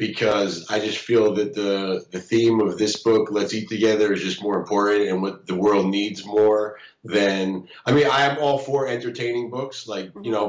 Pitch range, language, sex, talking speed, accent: 105-120 Hz, English, male, 205 wpm, American